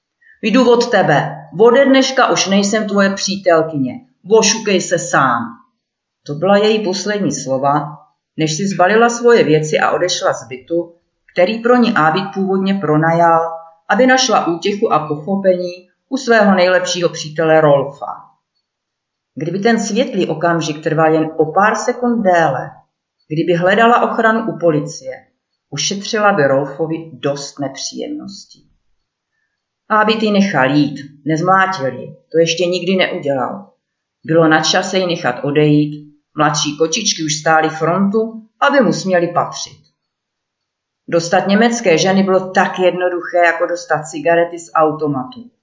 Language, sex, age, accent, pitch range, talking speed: Czech, female, 50-69, native, 155-210 Hz, 130 wpm